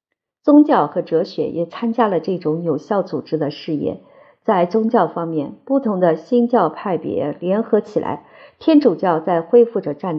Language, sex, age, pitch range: Chinese, female, 50-69, 165-220 Hz